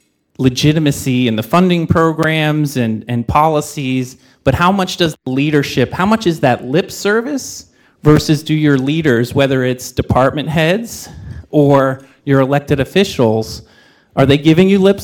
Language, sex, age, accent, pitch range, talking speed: English, male, 30-49, American, 120-155 Hz, 150 wpm